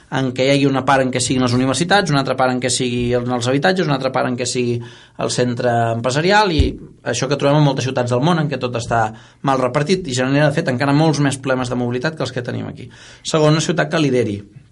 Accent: Spanish